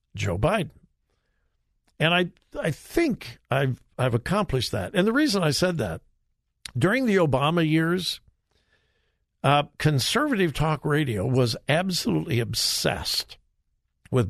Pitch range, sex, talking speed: 120-175 Hz, male, 120 wpm